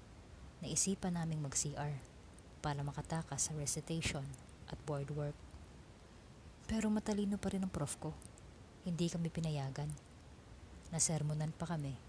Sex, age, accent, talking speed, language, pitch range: female, 20-39, native, 110 wpm, Filipino, 130-165 Hz